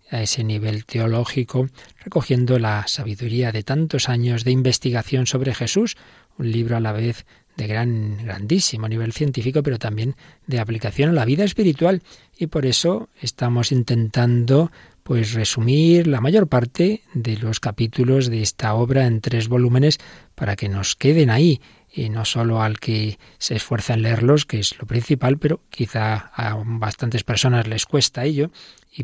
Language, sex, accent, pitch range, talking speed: Spanish, male, Spanish, 115-140 Hz, 160 wpm